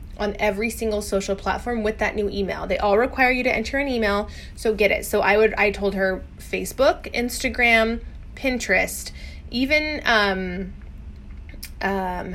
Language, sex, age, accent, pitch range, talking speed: English, female, 20-39, American, 200-250 Hz, 155 wpm